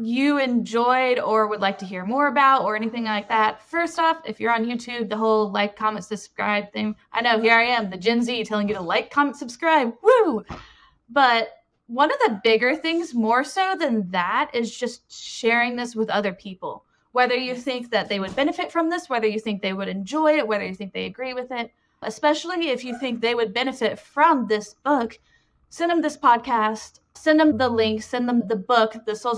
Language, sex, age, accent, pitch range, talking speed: English, female, 20-39, American, 215-260 Hz, 210 wpm